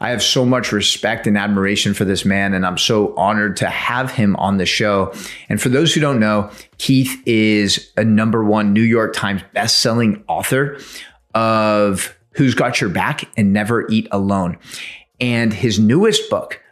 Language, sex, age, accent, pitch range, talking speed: English, male, 30-49, American, 105-130 Hz, 175 wpm